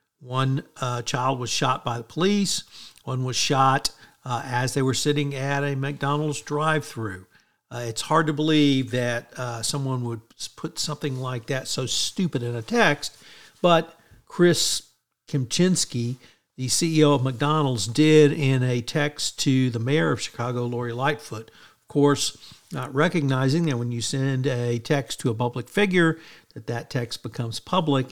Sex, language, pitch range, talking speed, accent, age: male, English, 120-155 Hz, 160 wpm, American, 50-69